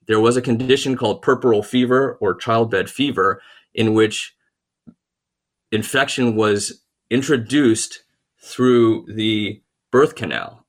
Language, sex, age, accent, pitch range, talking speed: English, male, 30-49, American, 110-125 Hz, 105 wpm